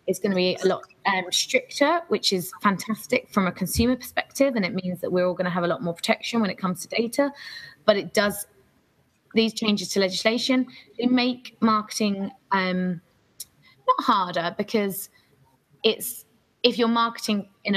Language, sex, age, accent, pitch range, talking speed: English, female, 20-39, British, 180-215 Hz, 175 wpm